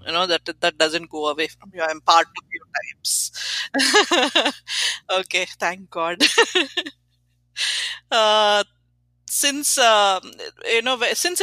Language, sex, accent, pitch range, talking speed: English, female, Indian, 170-240 Hz, 120 wpm